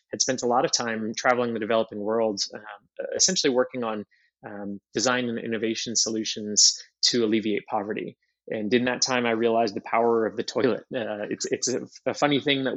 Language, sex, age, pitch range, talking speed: English, male, 20-39, 115-140 Hz, 195 wpm